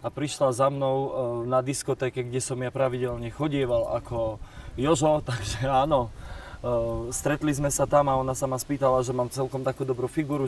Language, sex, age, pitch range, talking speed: Slovak, male, 20-39, 115-135 Hz, 170 wpm